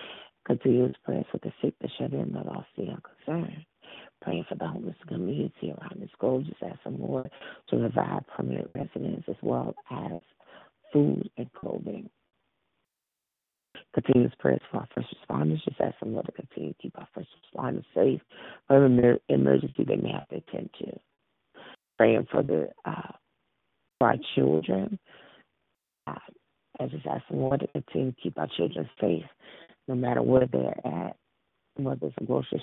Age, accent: 50-69, American